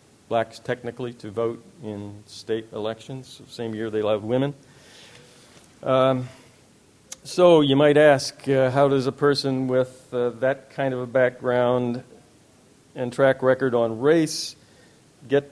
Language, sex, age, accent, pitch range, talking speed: English, male, 40-59, American, 120-140 Hz, 135 wpm